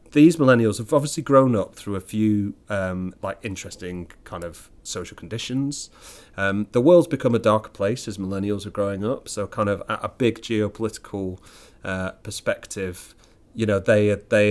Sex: male